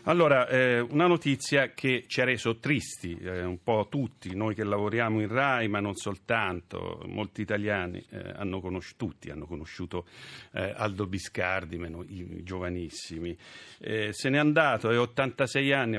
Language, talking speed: Italian, 160 wpm